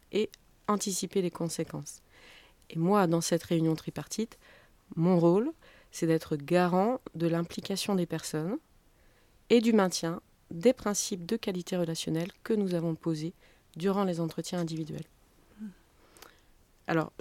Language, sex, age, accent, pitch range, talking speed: French, female, 30-49, French, 160-190 Hz, 125 wpm